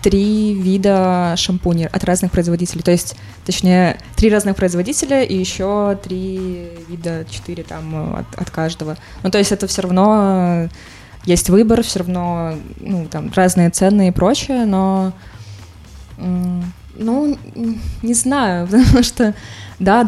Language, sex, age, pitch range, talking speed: Russian, female, 20-39, 165-195 Hz, 130 wpm